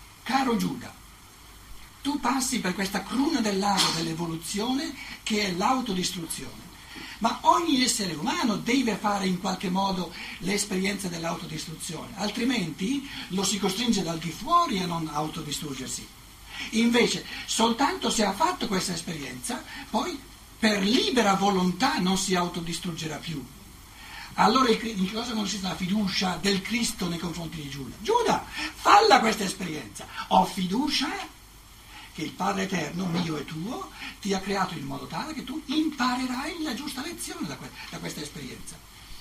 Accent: native